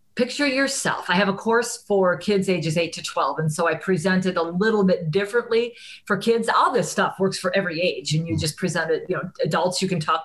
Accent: American